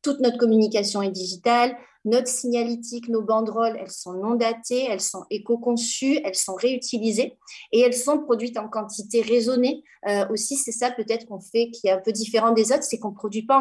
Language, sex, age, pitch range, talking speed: French, female, 30-49, 195-240 Hz, 200 wpm